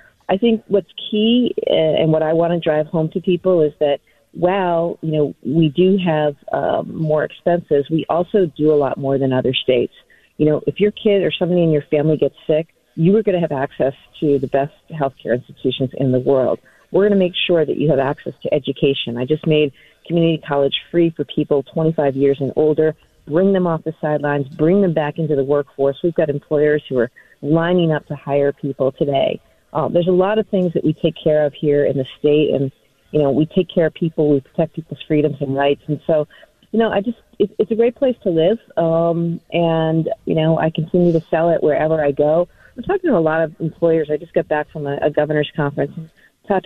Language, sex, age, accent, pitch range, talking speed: English, female, 40-59, American, 145-175 Hz, 230 wpm